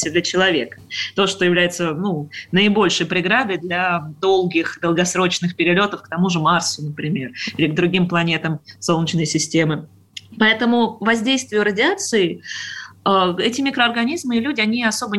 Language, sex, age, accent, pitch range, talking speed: Russian, female, 20-39, native, 170-220 Hz, 125 wpm